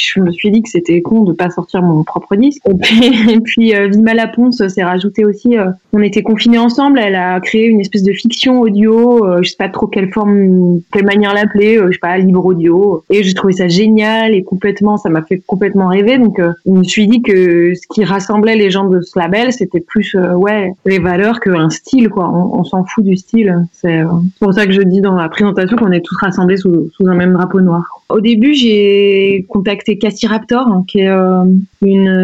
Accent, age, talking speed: French, 20-39, 220 wpm